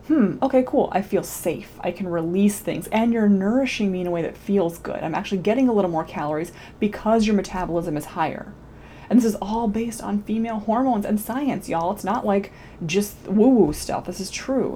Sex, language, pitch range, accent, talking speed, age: female, English, 180-230 Hz, American, 210 wpm, 20-39